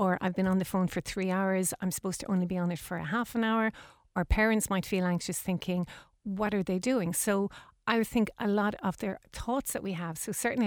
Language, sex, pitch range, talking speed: English, female, 180-220 Hz, 245 wpm